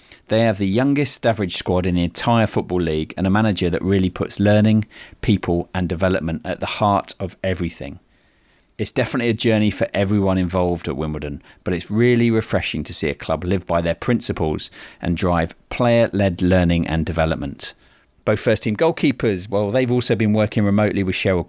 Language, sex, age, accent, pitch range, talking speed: English, male, 40-59, British, 85-110 Hz, 180 wpm